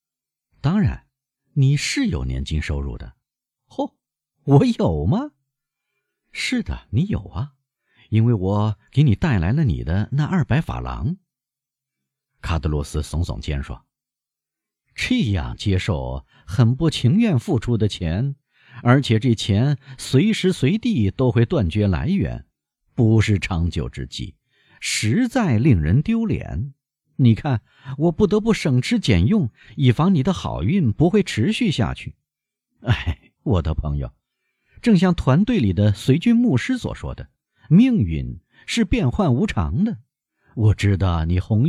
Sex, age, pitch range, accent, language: male, 50-69, 95-155 Hz, native, Chinese